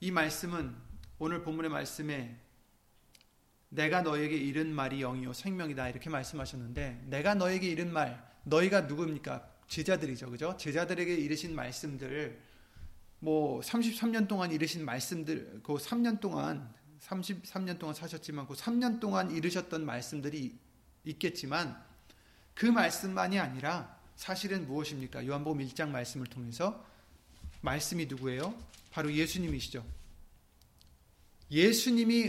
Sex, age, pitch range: male, 30-49, 125-175 Hz